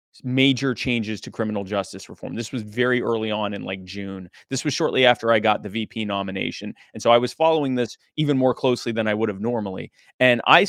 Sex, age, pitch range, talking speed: male, 30-49, 115-145 Hz, 220 wpm